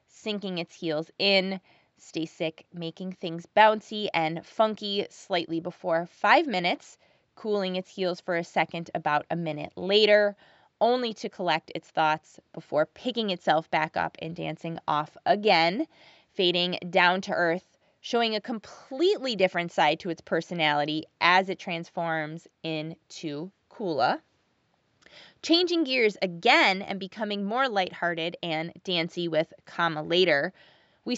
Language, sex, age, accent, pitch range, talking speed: English, female, 20-39, American, 165-205 Hz, 135 wpm